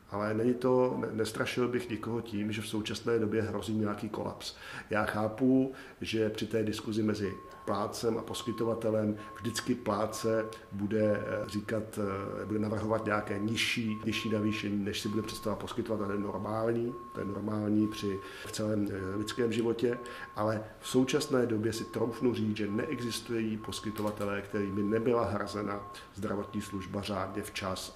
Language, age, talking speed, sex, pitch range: Czech, 50-69, 140 wpm, male, 105-115 Hz